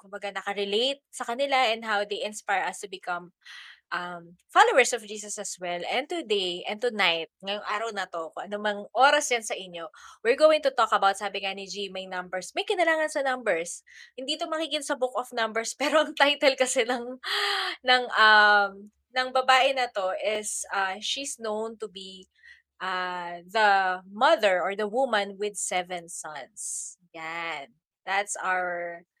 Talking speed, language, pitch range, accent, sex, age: 170 wpm, Filipino, 190-260 Hz, native, female, 20-39